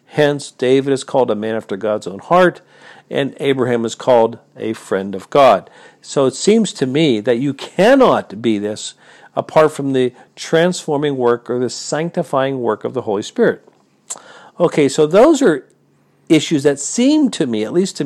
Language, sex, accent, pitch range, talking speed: English, male, American, 130-170 Hz, 175 wpm